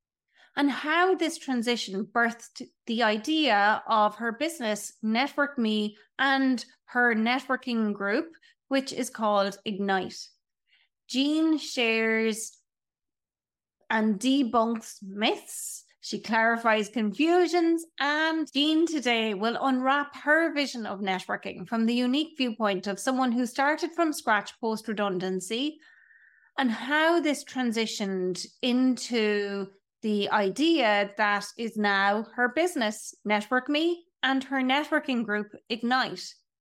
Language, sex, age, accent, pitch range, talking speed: English, female, 30-49, Irish, 220-295 Hz, 110 wpm